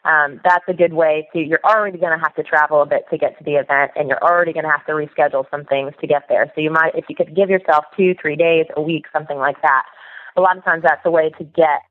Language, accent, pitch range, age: English, American, 150-185 Hz, 20-39